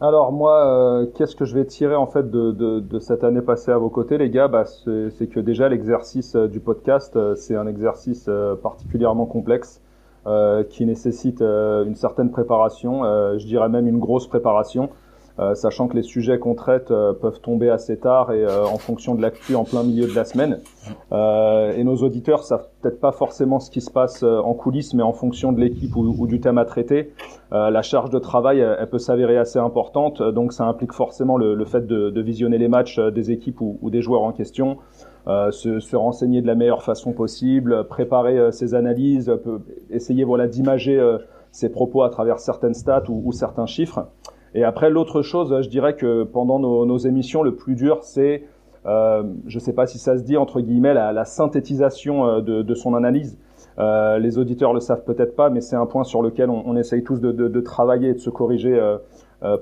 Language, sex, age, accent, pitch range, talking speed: French, male, 30-49, French, 115-130 Hz, 200 wpm